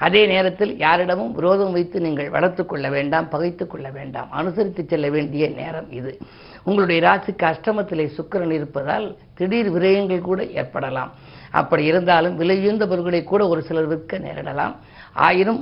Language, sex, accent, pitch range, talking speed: Tamil, female, native, 150-190 Hz, 125 wpm